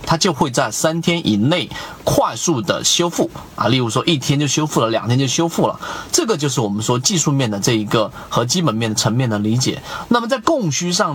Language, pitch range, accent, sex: Chinese, 120-175 Hz, native, male